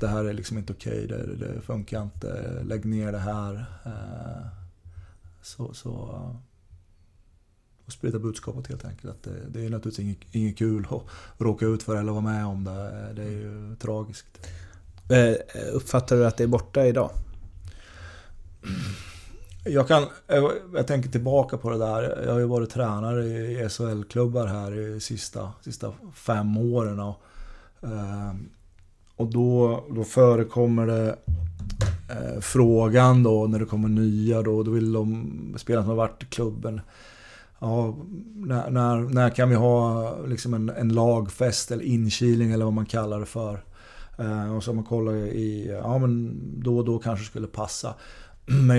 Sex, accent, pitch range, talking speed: male, native, 105-120 Hz, 160 wpm